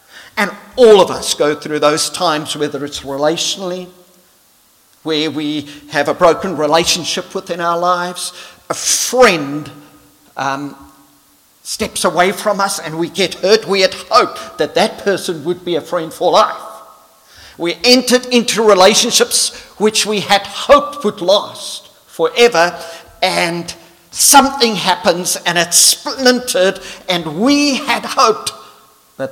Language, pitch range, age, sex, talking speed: English, 165-230 Hz, 50-69, male, 135 wpm